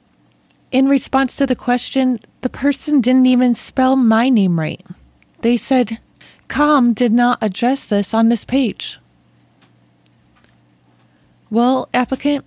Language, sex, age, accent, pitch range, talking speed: English, female, 30-49, American, 200-270 Hz, 120 wpm